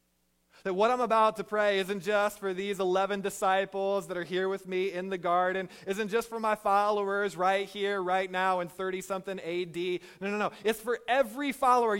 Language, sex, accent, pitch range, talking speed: English, male, American, 140-235 Hz, 195 wpm